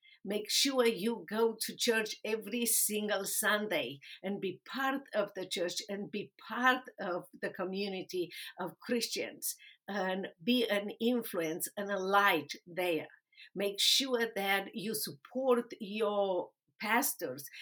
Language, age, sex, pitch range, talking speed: English, 50-69, female, 185-230 Hz, 130 wpm